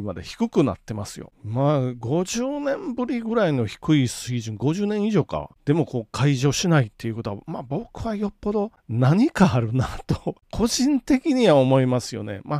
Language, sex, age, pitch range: Japanese, male, 40-59, 120-185 Hz